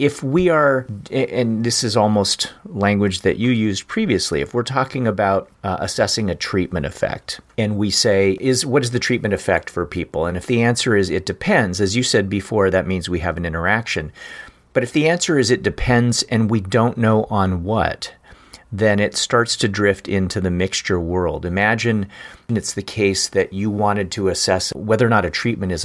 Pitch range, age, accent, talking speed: 95-120 Hz, 40-59, American, 200 wpm